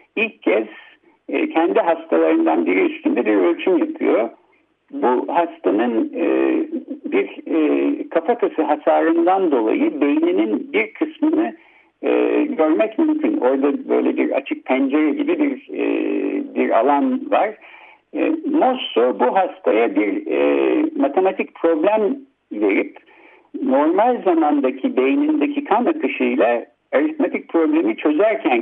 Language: Turkish